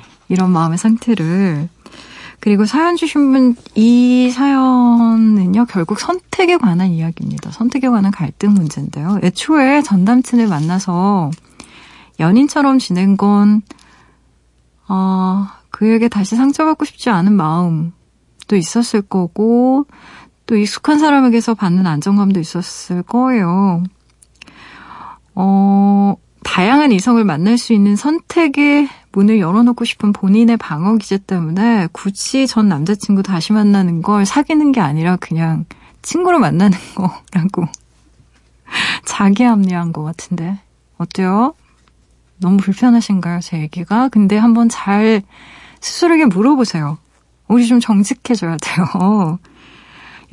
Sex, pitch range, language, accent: female, 185-245 Hz, Korean, native